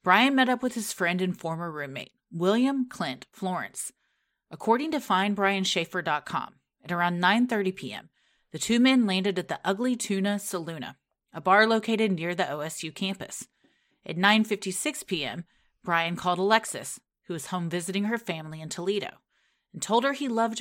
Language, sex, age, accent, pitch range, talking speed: English, female, 30-49, American, 170-220 Hz, 155 wpm